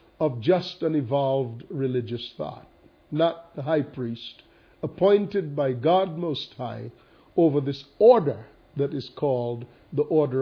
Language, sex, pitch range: English, male, 130-185 Hz